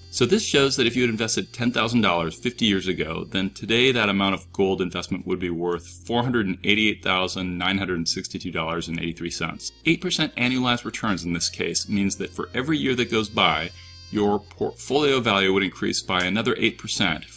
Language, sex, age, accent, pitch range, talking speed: English, male, 30-49, American, 90-115 Hz, 155 wpm